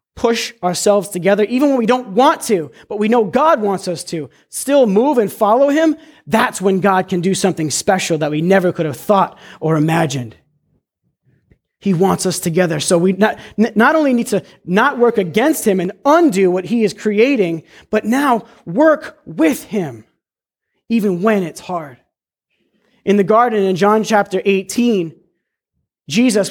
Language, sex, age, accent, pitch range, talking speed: English, male, 30-49, American, 165-220 Hz, 165 wpm